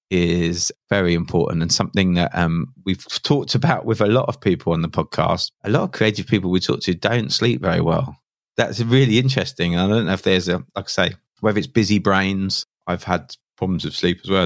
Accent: British